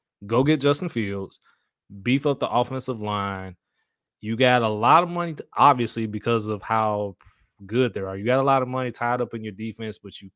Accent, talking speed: American, 210 wpm